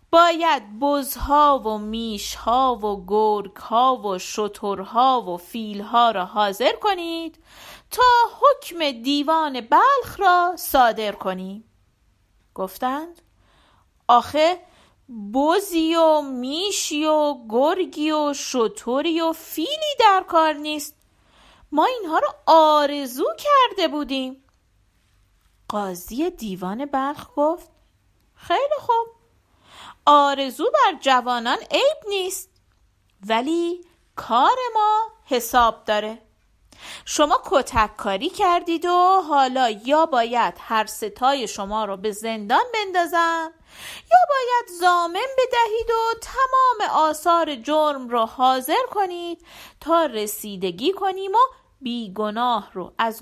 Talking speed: 100 wpm